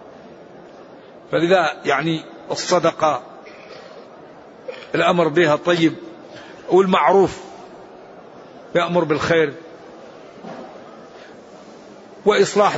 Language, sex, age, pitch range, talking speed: Arabic, male, 50-69, 185-220 Hz, 45 wpm